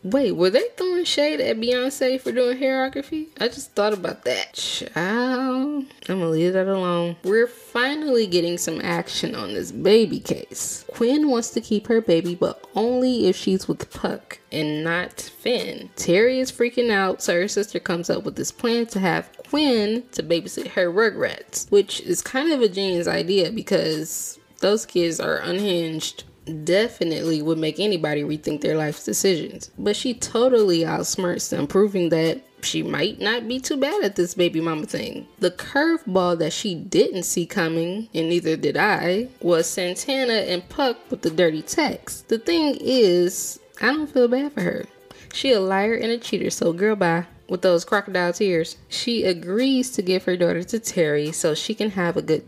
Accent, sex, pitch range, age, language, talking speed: American, female, 170-245 Hz, 10-29, English, 180 wpm